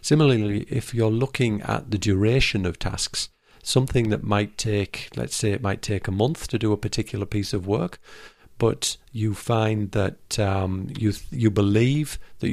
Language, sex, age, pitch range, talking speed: English, male, 50-69, 100-115 Hz, 170 wpm